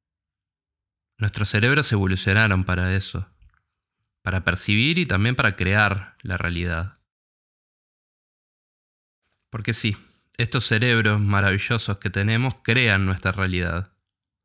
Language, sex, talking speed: Spanish, male, 95 wpm